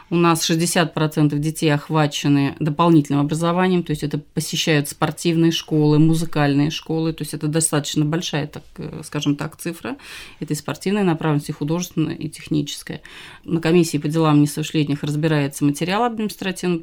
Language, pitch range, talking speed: Russian, 150-165 Hz, 135 wpm